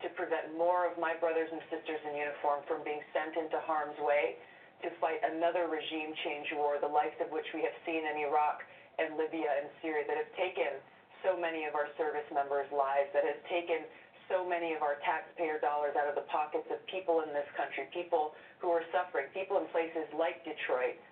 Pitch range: 155-175 Hz